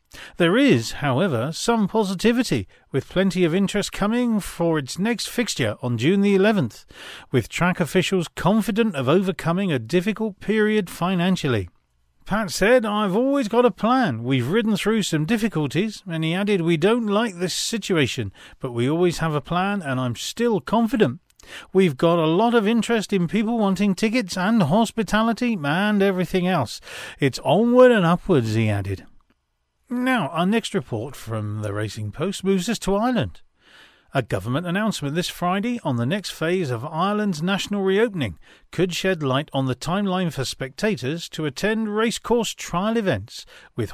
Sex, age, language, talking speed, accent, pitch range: male, 40-59, English, 160 wpm, British, 135-205 Hz